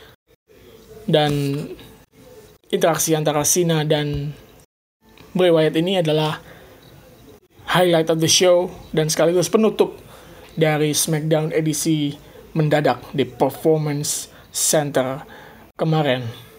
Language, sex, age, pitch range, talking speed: Indonesian, male, 20-39, 155-185 Hz, 85 wpm